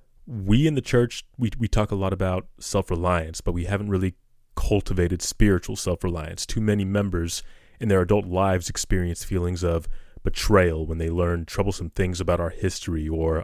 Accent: American